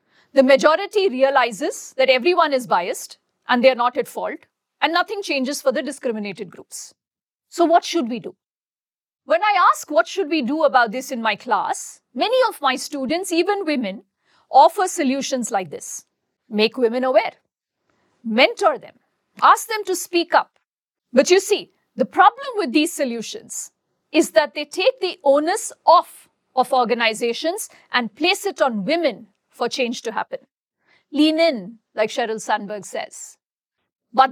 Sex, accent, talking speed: female, Indian, 155 wpm